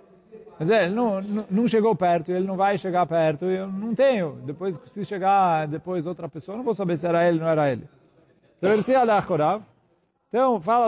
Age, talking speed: 40-59, 190 wpm